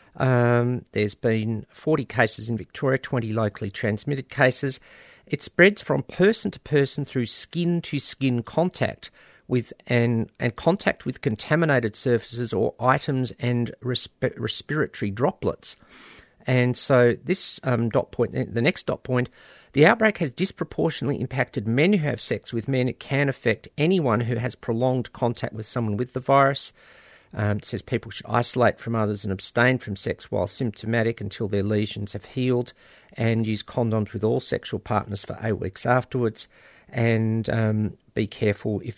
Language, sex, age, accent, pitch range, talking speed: English, male, 50-69, Australian, 110-135 Hz, 160 wpm